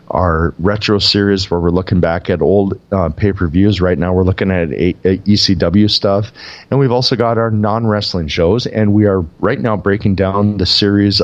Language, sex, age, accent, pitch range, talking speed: English, male, 40-59, American, 90-105 Hz, 190 wpm